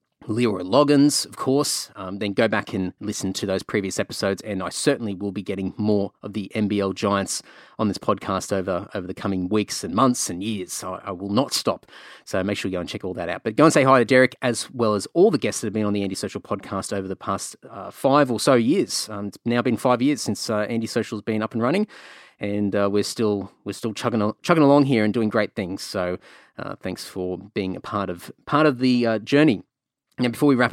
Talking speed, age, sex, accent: 250 wpm, 30-49, male, Australian